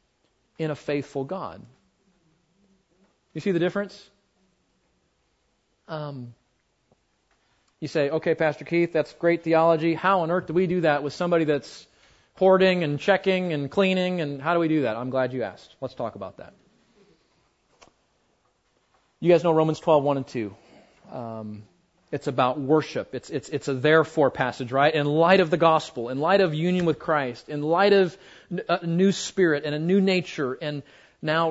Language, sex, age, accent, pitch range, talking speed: English, male, 30-49, American, 145-175 Hz, 175 wpm